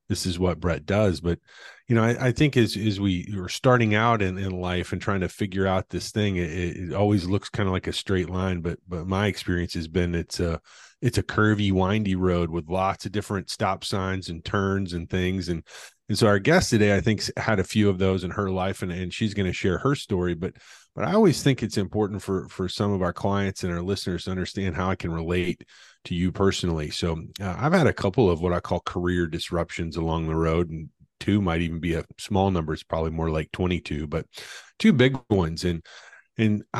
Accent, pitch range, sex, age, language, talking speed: American, 85-105 Hz, male, 30-49, English, 235 wpm